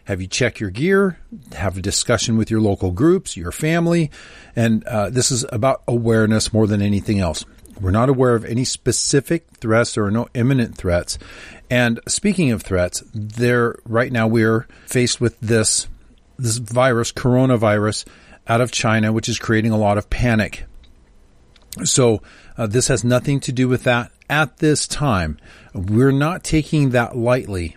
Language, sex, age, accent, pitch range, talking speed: English, male, 40-59, American, 105-125 Hz, 165 wpm